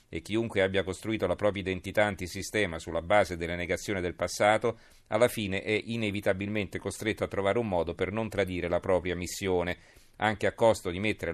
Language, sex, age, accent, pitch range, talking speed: Italian, male, 40-59, native, 90-105 Hz, 180 wpm